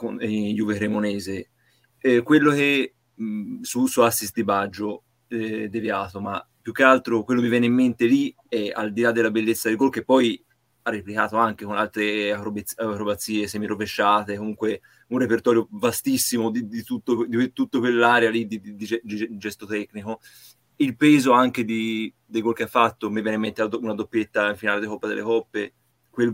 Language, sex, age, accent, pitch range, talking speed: Italian, male, 30-49, native, 105-120 Hz, 190 wpm